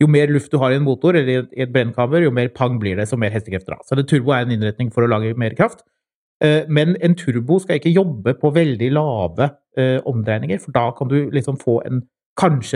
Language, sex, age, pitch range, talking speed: English, male, 30-49, 125-155 Hz, 255 wpm